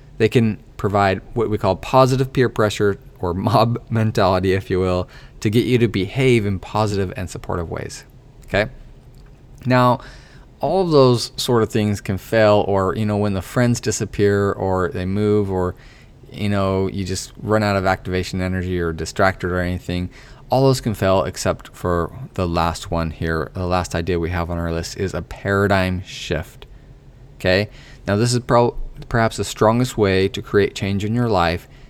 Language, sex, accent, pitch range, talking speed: English, male, American, 95-125 Hz, 180 wpm